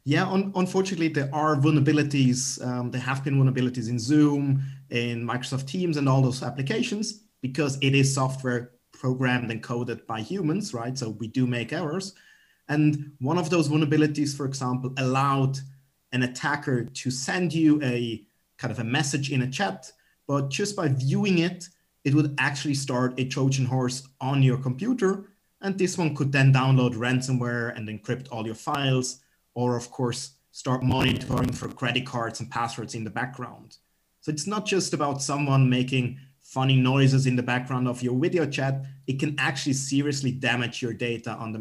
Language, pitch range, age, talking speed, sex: English, 125-150 Hz, 30-49, 175 wpm, male